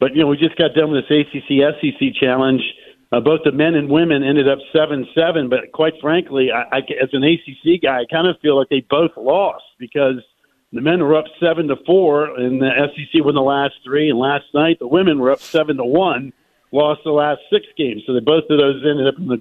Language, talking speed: English, 230 wpm